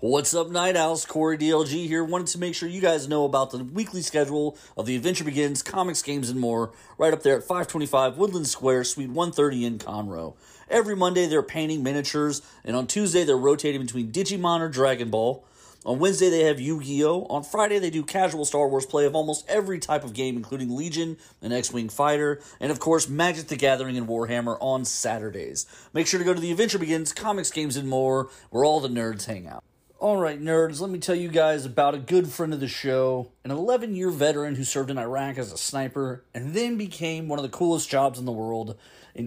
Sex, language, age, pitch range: male, English, 30-49, 130-170 Hz